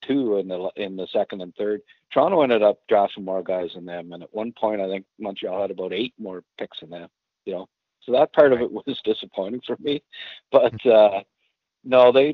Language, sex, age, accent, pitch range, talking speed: English, male, 50-69, American, 90-110 Hz, 220 wpm